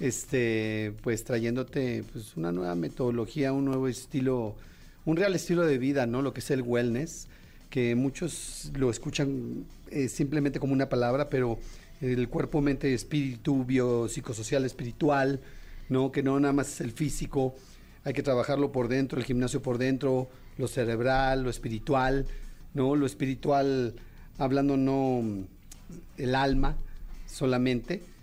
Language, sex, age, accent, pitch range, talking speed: Spanish, male, 40-59, Mexican, 125-145 Hz, 140 wpm